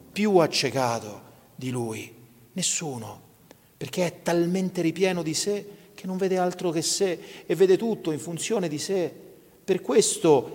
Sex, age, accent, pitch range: male, 40-59, native, 140-180 Hz